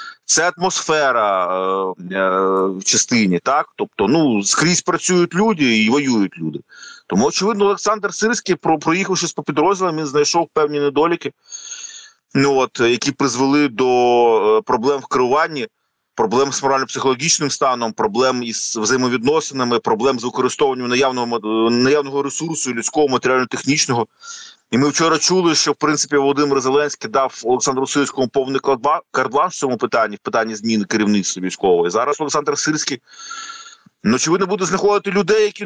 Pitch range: 130-200 Hz